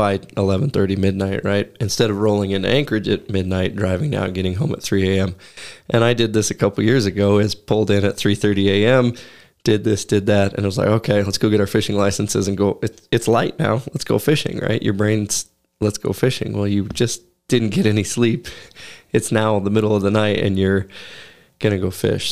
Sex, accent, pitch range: male, American, 100-110 Hz